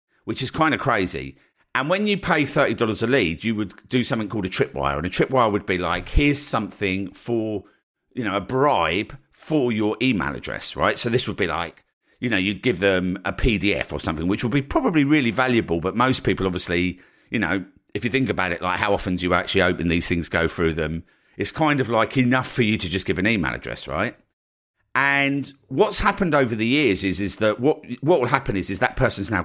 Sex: male